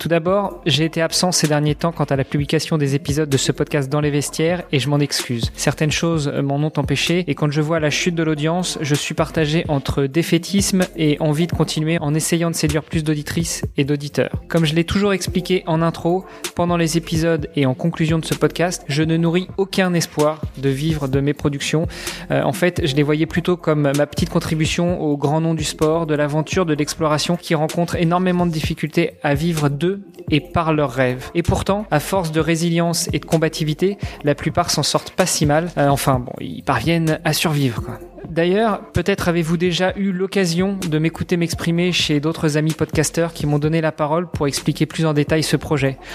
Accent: French